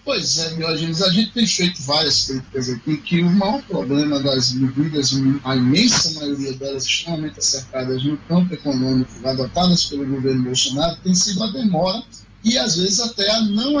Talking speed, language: 175 wpm, Portuguese